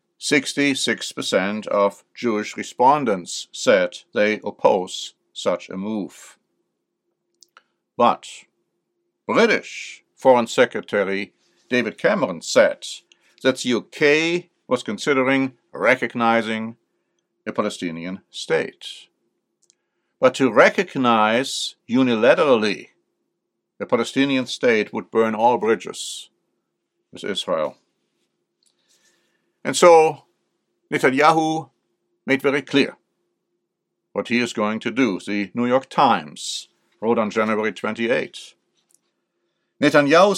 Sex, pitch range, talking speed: male, 110-145 Hz, 90 wpm